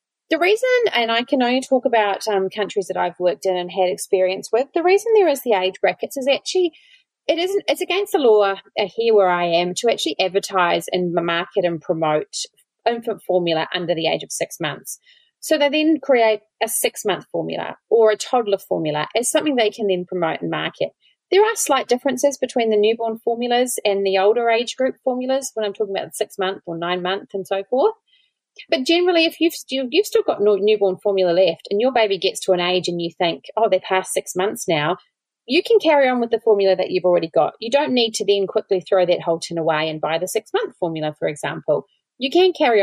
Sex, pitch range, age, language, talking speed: female, 185-290 Hz, 30-49, English, 220 wpm